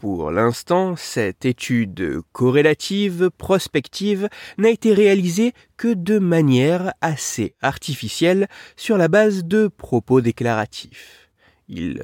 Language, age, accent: French, 30-49, French